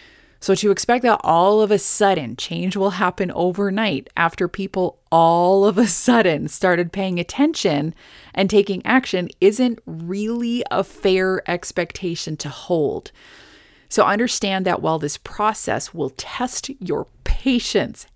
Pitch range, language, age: 160-210 Hz, English, 30-49